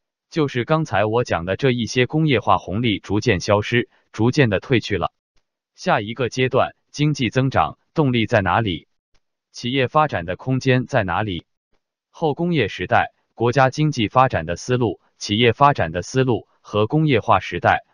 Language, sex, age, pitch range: Chinese, male, 20-39, 105-140 Hz